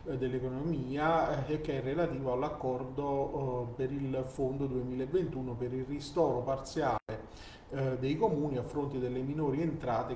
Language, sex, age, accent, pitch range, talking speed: Italian, male, 40-59, native, 125-150 Hz, 135 wpm